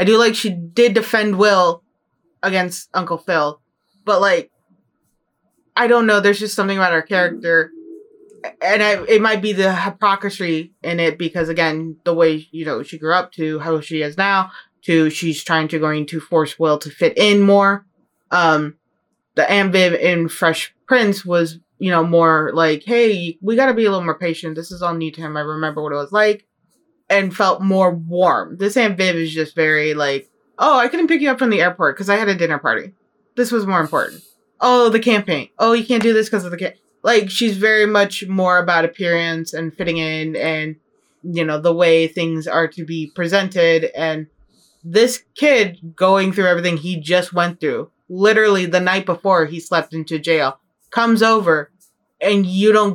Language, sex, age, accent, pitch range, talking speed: English, female, 20-39, American, 165-210 Hz, 195 wpm